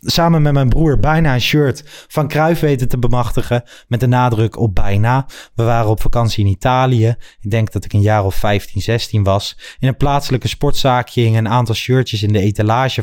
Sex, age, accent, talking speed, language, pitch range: male, 20-39, Dutch, 205 wpm, Dutch, 110-140 Hz